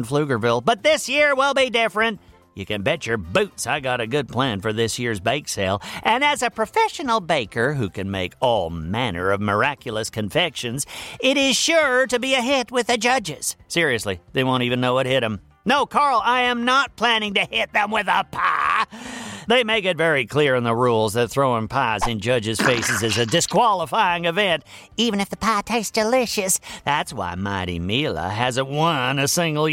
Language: English